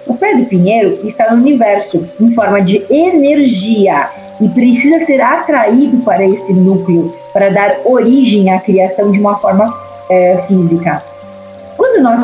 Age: 40-59